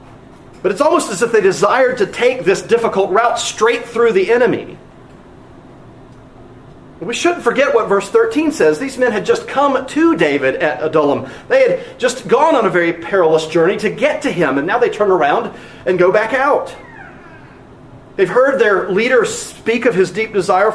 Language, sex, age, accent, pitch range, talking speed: English, male, 40-59, American, 175-270 Hz, 180 wpm